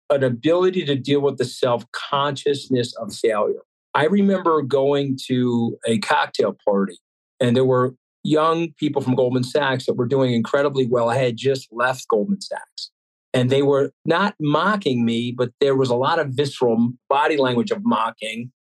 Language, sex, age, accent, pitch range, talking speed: English, male, 50-69, American, 125-145 Hz, 165 wpm